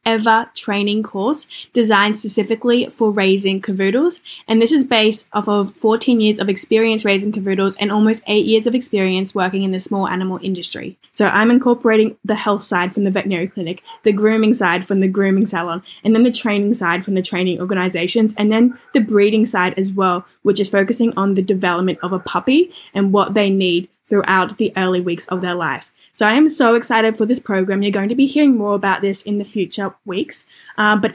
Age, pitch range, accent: 10-29, 195-230 Hz, Australian